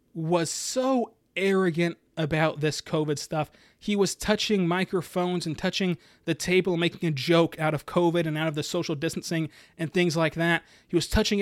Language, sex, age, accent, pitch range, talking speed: English, male, 30-49, American, 155-185 Hz, 180 wpm